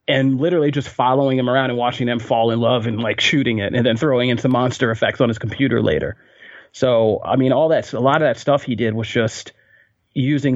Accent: American